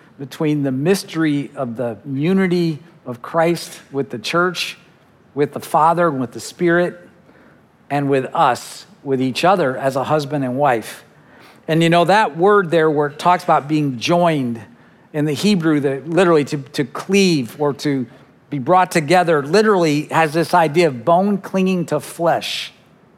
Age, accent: 50-69, American